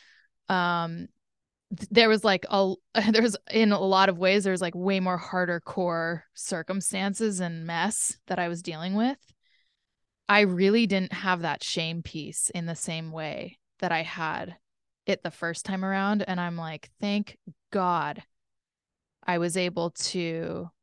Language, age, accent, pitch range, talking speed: English, 20-39, American, 175-205 Hz, 155 wpm